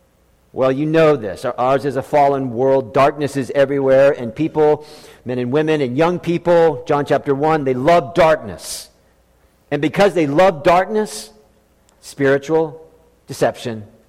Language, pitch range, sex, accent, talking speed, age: English, 145-220 Hz, male, American, 140 wpm, 50-69